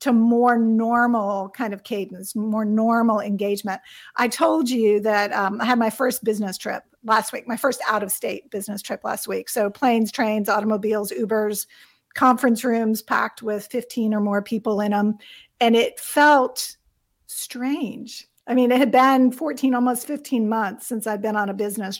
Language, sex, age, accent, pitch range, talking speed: English, female, 50-69, American, 210-245 Hz, 175 wpm